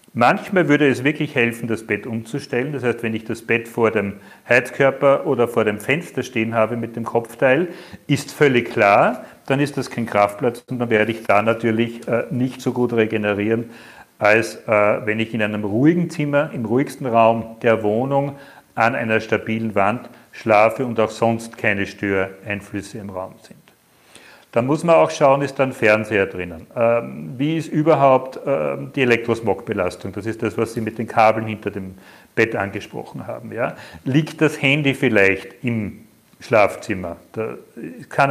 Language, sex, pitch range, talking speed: German, male, 110-140 Hz, 165 wpm